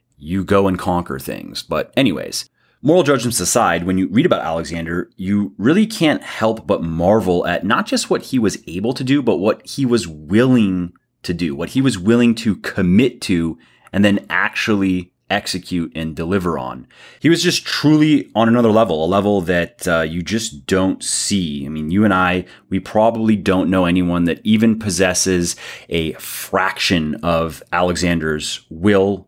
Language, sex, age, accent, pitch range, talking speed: English, male, 30-49, American, 90-115 Hz, 170 wpm